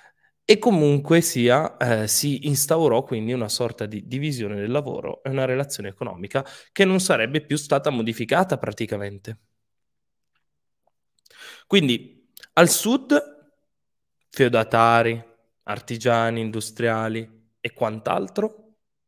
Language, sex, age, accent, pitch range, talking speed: Italian, male, 20-39, native, 105-135 Hz, 100 wpm